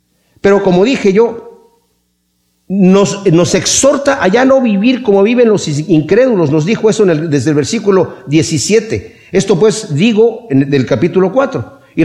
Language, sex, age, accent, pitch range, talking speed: Spanish, male, 50-69, Mexican, 145-215 Hz, 165 wpm